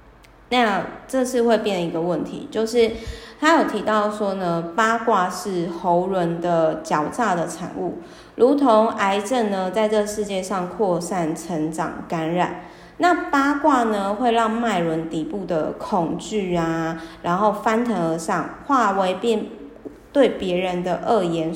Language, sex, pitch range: Chinese, female, 170-230 Hz